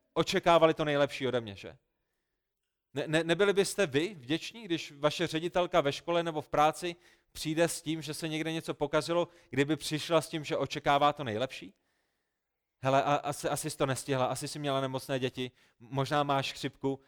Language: Czech